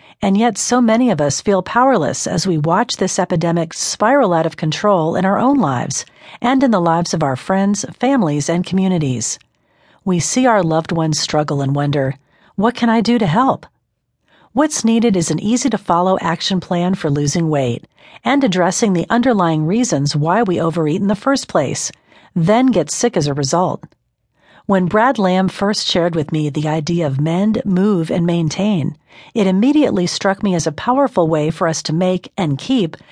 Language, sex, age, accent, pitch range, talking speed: English, female, 40-59, American, 160-215 Hz, 185 wpm